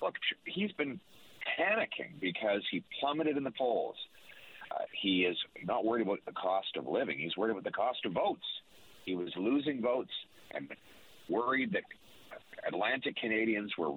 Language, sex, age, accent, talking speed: English, male, 50-69, American, 160 wpm